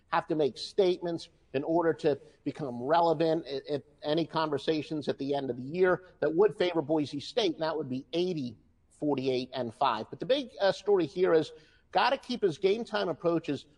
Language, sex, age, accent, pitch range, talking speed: English, male, 50-69, American, 155-215 Hz, 195 wpm